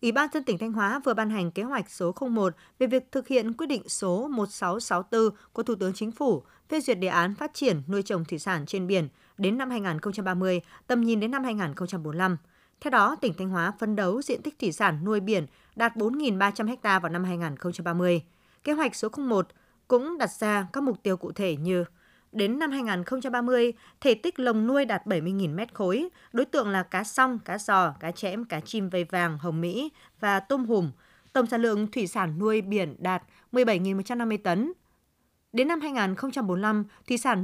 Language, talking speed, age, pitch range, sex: Vietnamese, 195 wpm, 20-39, 180-245 Hz, female